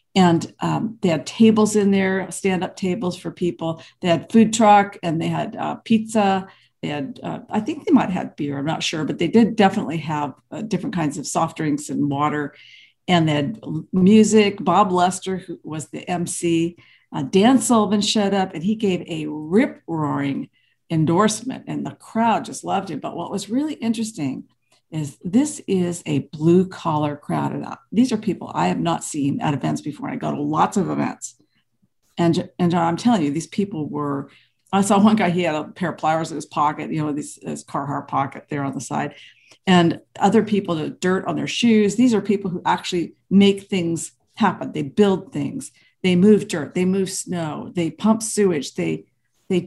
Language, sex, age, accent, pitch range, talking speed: English, female, 50-69, American, 160-210 Hz, 200 wpm